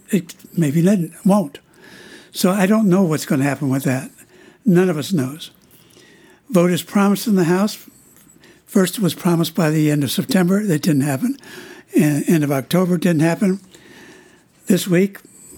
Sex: male